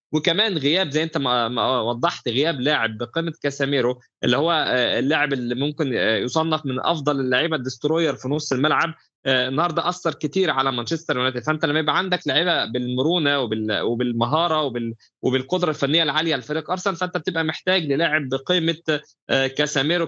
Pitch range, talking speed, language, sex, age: 130-160 Hz, 150 wpm, Arabic, male, 20-39